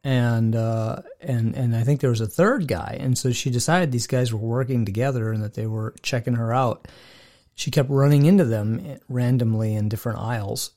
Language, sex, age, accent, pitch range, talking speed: English, male, 40-59, American, 110-135 Hz, 200 wpm